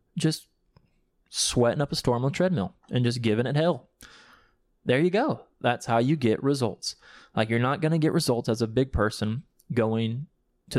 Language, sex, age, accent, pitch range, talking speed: English, male, 20-39, American, 110-130 Hz, 190 wpm